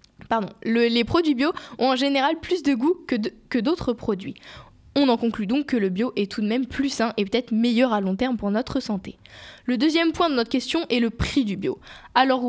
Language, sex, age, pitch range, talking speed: French, female, 10-29, 225-295 Hz, 240 wpm